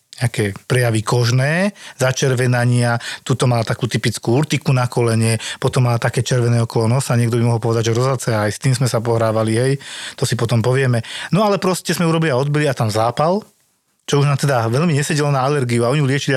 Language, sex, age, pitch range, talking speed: Slovak, male, 40-59, 120-150 Hz, 200 wpm